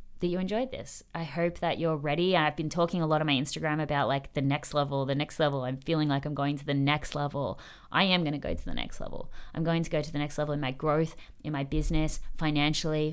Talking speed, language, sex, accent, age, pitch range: 265 wpm, English, female, Australian, 20-39, 140-160 Hz